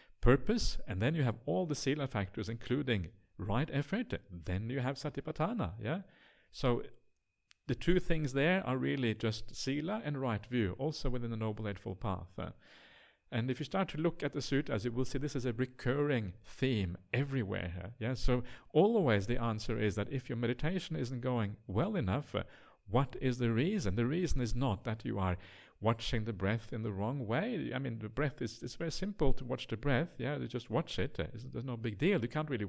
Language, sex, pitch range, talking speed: English, male, 110-140 Hz, 210 wpm